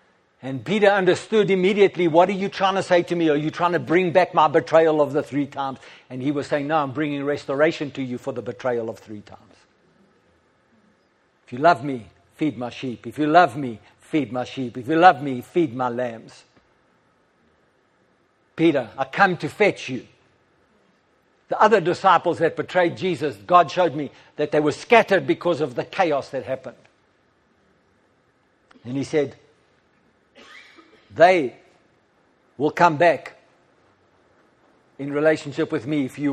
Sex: male